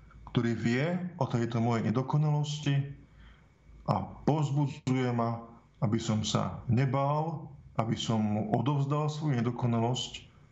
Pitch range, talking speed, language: 110-140 Hz, 110 wpm, Slovak